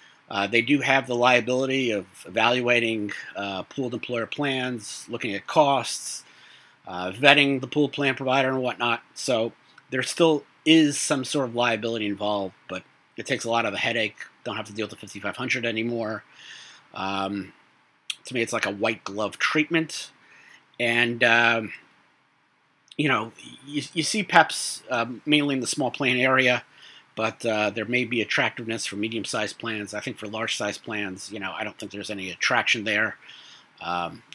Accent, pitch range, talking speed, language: American, 105-130 Hz, 170 wpm, English